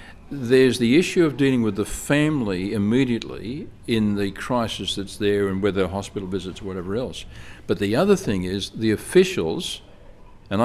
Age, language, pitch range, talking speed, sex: 50-69, English, 95-120 Hz, 165 wpm, male